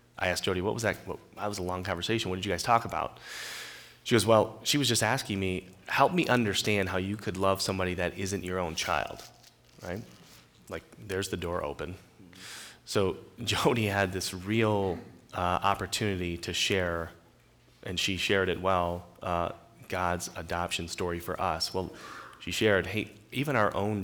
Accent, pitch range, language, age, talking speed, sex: American, 90-105 Hz, English, 30-49, 180 wpm, male